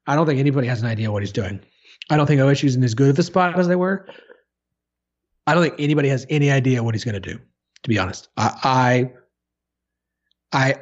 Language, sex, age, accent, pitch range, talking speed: English, male, 30-49, American, 115-145 Hz, 220 wpm